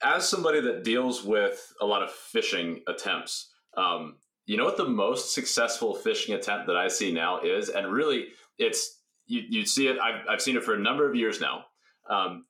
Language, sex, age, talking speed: English, male, 30-49, 200 wpm